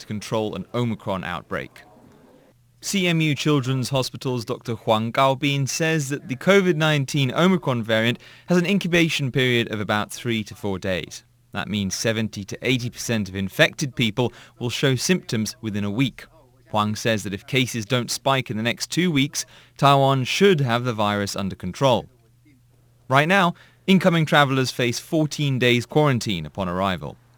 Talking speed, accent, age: 155 wpm, British, 30-49